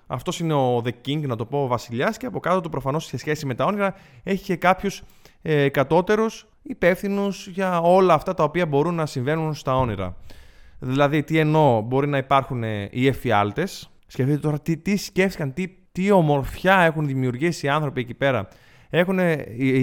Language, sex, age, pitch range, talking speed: Greek, male, 20-39, 130-200 Hz, 175 wpm